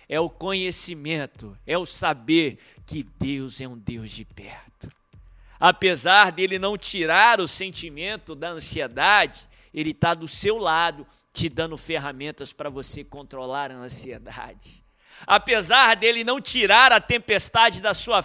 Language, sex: Portuguese, male